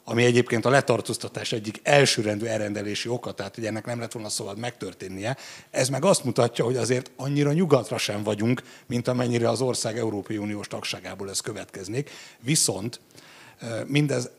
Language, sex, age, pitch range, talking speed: Hungarian, male, 60-79, 105-125 Hz, 155 wpm